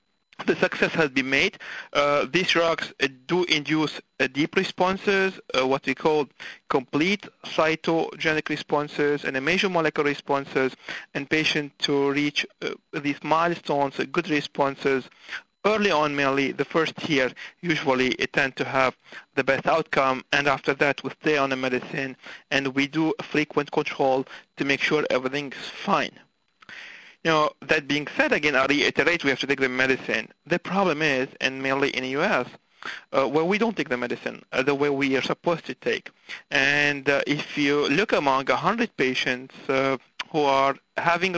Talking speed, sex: 170 wpm, male